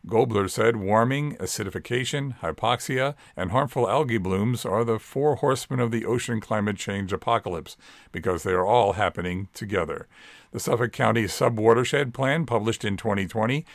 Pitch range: 100-130 Hz